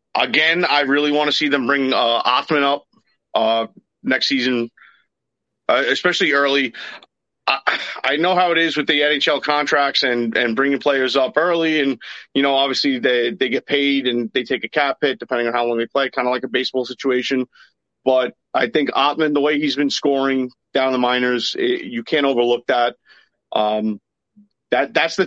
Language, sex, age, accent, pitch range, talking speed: English, male, 30-49, American, 130-150 Hz, 190 wpm